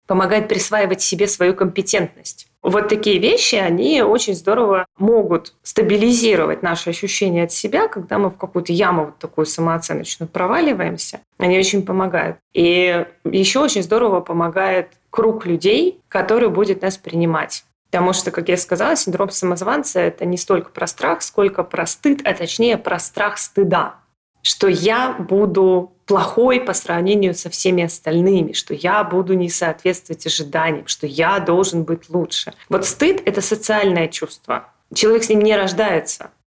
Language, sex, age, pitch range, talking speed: Russian, female, 20-39, 180-230 Hz, 150 wpm